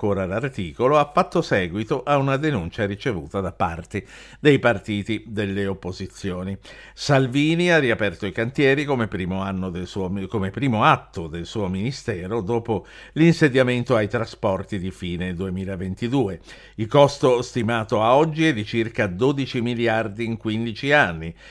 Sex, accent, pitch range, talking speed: male, native, 100-135 Hz, 140 wpm